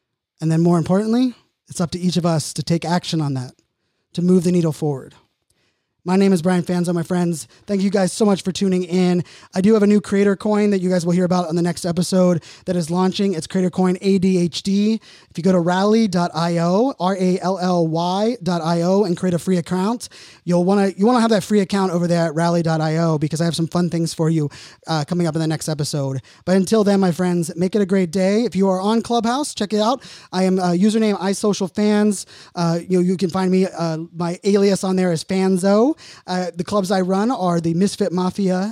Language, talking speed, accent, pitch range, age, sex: English, 230 wpm, American, 175-205 Hz, 20-39, male